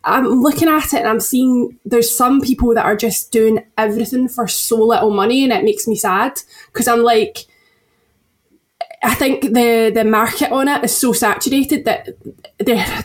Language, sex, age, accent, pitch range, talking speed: English, female, 10-29, British, 210-245 Hz, 180 wpm